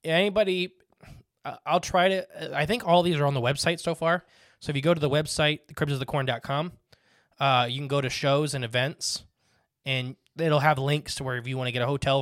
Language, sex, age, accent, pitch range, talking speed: English, male, 20-39, American, 125-150 Hz, 215 wpm